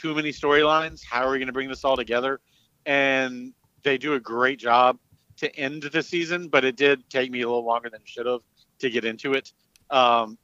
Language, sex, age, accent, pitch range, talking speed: English, male, 40-59, American, 120-140 Hz, 225 wpm